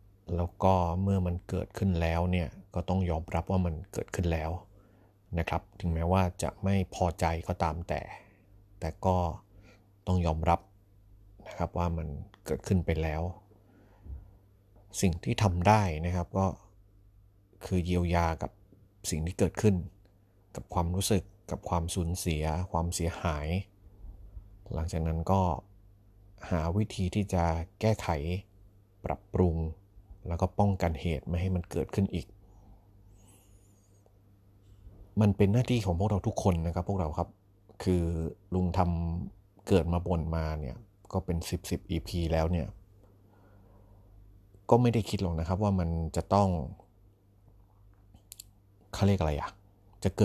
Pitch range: 85-100 Hz